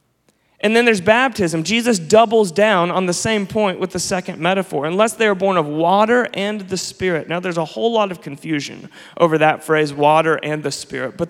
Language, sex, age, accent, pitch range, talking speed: English, male, 30-49, American, 160-195 Hz, 205 wpm